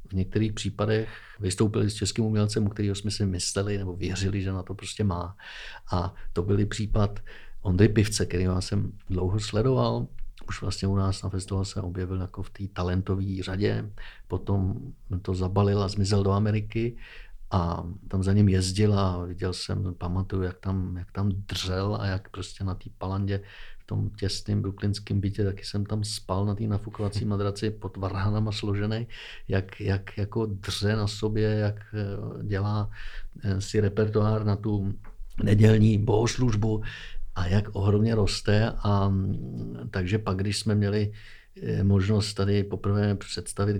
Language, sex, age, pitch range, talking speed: Czech, male, 50-69, 95-105 Hz, 155 wpm